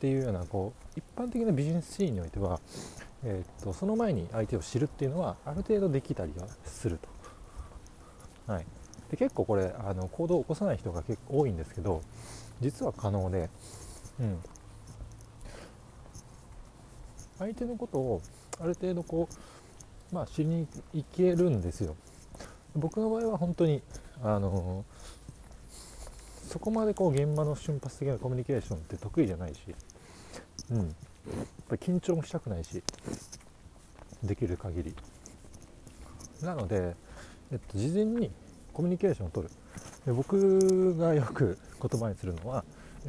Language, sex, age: Japanese, male, 40-59